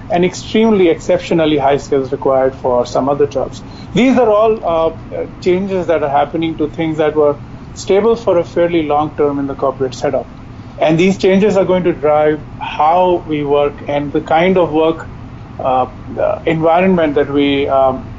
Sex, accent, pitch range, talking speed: male, Indian, 130-170 Hz, 175 wpm